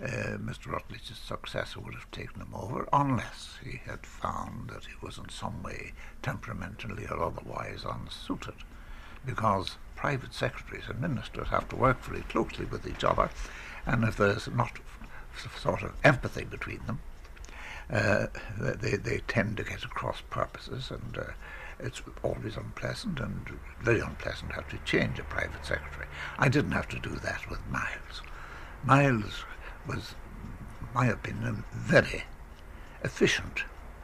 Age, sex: 60-79, male